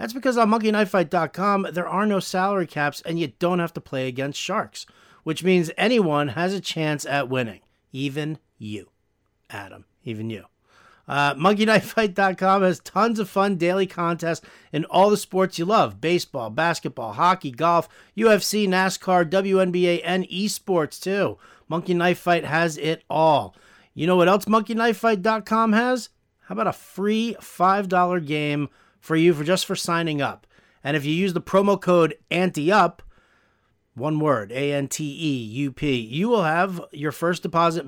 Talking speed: 160 wpm